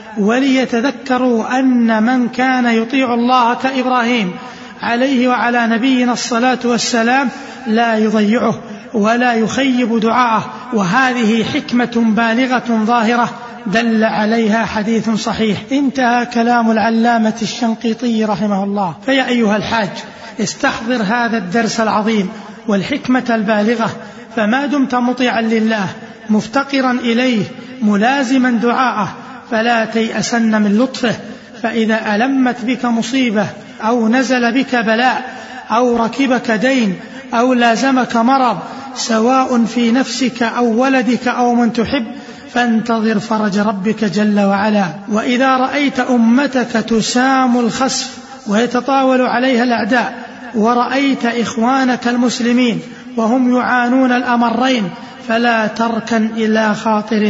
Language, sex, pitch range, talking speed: Arabic, male, 220-250 Hz, 100 wpm